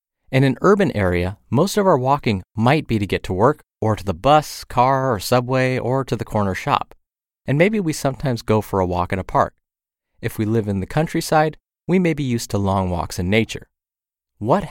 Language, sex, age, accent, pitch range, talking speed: English, male, 30-49, American, 100-135 Hz, 215 wpm